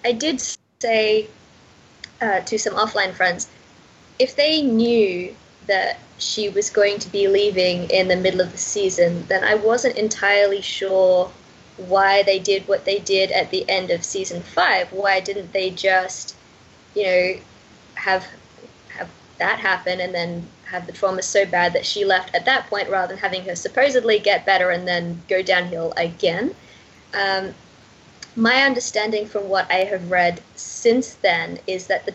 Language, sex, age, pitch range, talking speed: English, female, 20-39, 180-215 Hz, 165 wpm